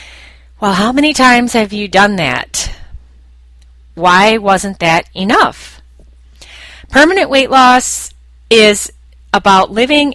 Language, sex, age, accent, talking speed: English, female, 30-49, American, 105 wpm